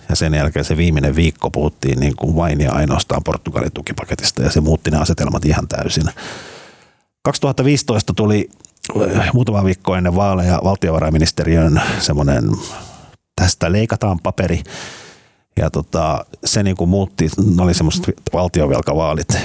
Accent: native